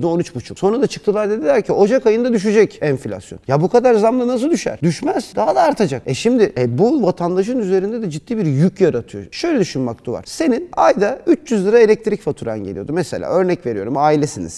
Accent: native